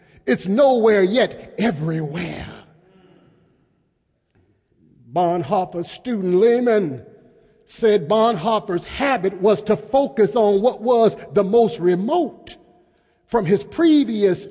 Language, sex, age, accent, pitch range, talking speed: English, male, 50-69, American, 180-230 Hz, 90 wpm